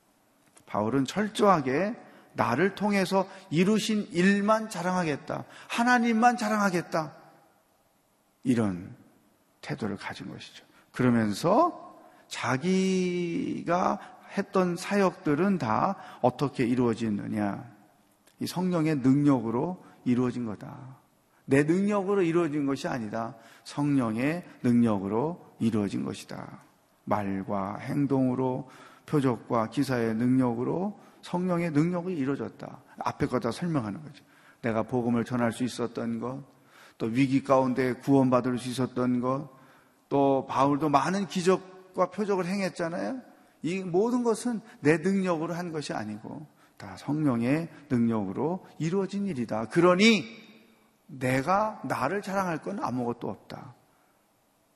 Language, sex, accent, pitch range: Korean, male, native, 125-185 Hz